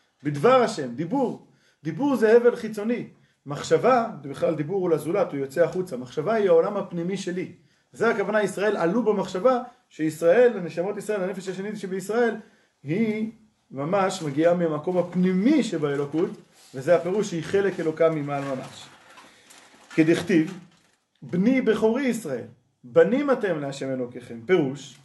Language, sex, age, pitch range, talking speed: Hebrew, male, 30-49, 155-220 Hz, 125 wpm